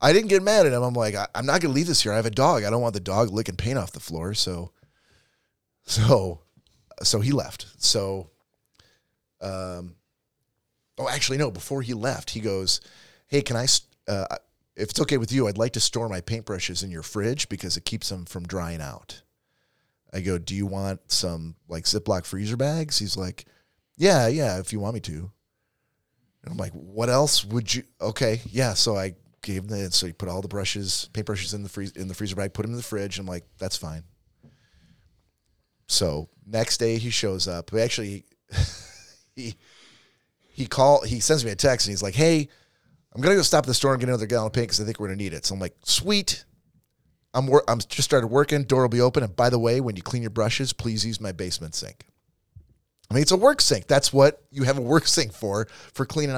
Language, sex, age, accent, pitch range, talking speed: English, male, 30-49, American, 95-130 Hz, 220 wpm